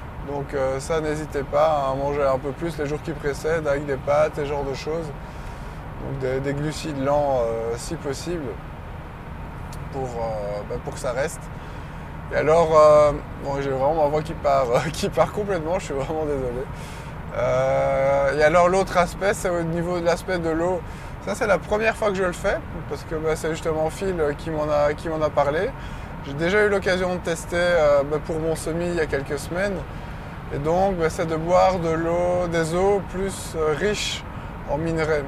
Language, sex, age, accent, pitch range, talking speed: French, male, 20-39, French, 140-165 Hz, 205 wpm